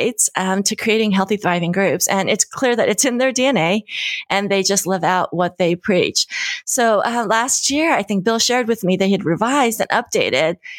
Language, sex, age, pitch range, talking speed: English, female, 30-49, 190-245 Hz, 205 wpm